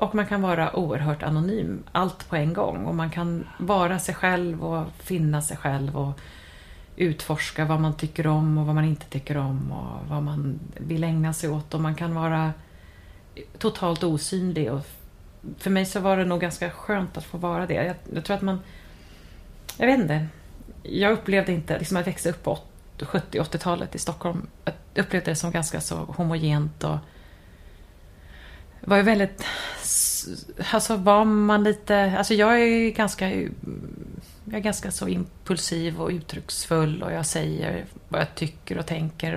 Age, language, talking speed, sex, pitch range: 30-49, Swedish, 165 wpm, female, 150-180 Hz